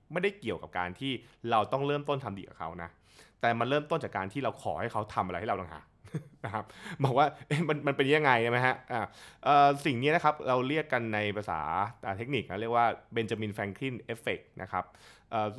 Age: 20-39